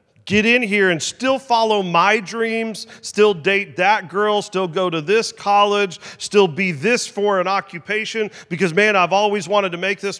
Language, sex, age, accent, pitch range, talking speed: English, male, 40-59, American, 150-205 Hz, 180 wpm